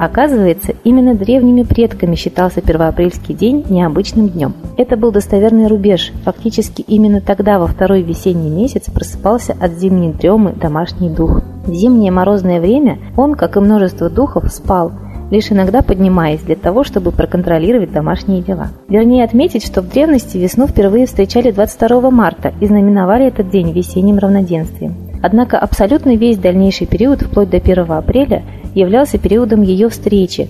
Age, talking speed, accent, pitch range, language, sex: 30-49, 145 wpm, native, 175-225 Hz, Russian, female